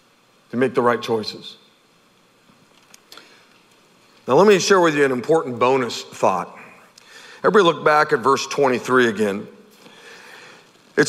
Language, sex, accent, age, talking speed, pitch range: English, male, American, 50-69, 125 wpm, 180-245 Hz